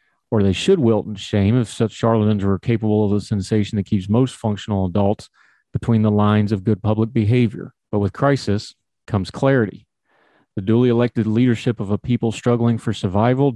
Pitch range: 105-125 Hz